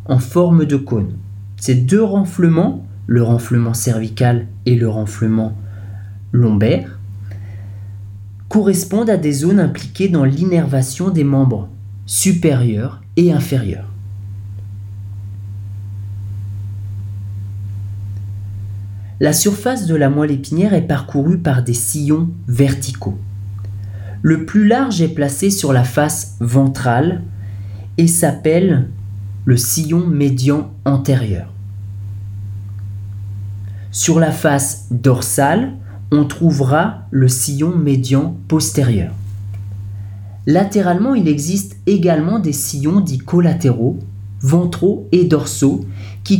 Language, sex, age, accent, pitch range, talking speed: French, male, 30-49, French, 100-155 Hz, 95 wpm